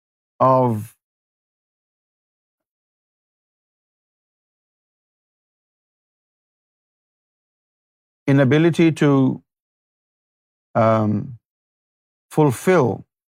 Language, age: Urdu, 50-69